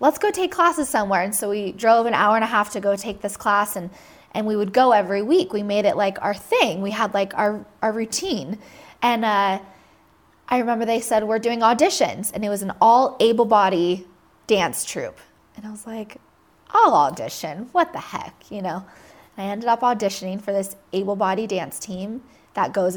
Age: 20-39